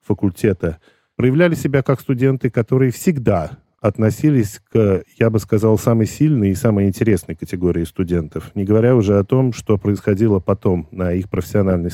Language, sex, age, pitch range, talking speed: Russian, male, 40-59, 105-140 Hz, 150 wpm